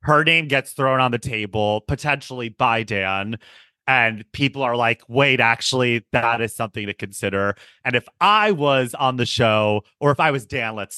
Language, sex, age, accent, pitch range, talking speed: English, male, 30-49, American, 115-140 Hz, 185 wpm